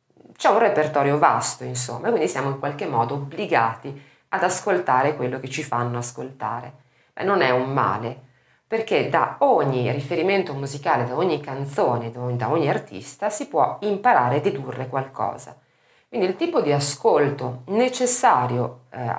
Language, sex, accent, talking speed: Italian, female, native, 150 wpm